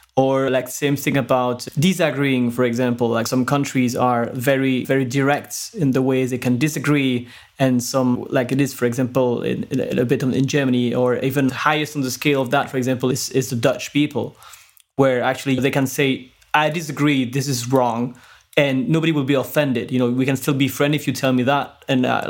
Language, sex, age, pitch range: English, male, 20-39, 125-145 Hz